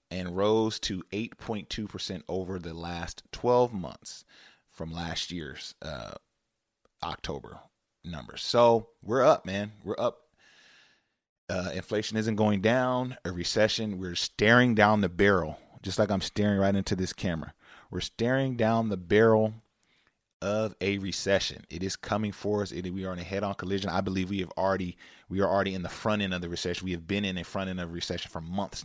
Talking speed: 185 wpm